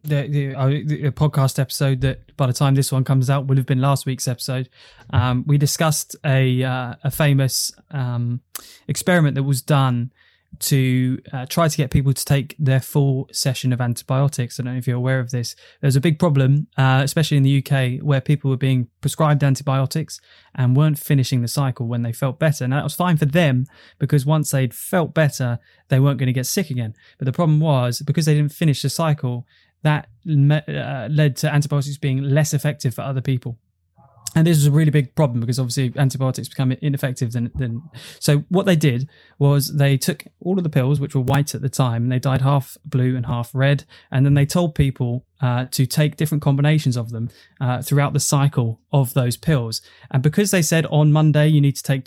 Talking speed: 210 wpm